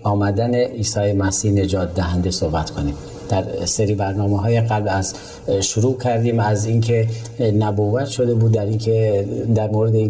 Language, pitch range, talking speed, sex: Persian, 100-115 Hz, 155 wpm, male